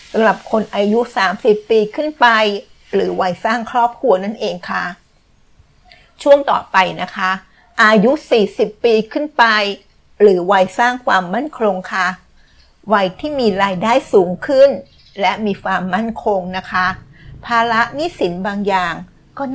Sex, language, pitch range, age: female, Thai, 195-240 Hz, 60-79